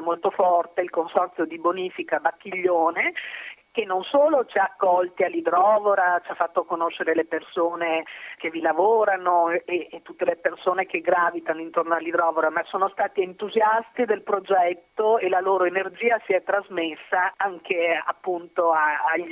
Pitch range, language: 165-200 Hz, Italian